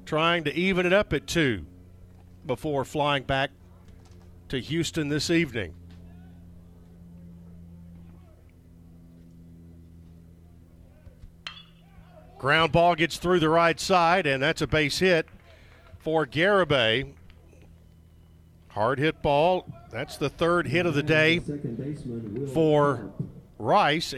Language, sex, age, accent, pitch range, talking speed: English, male, 50-69, American, 95-155 Hz, 100 wpm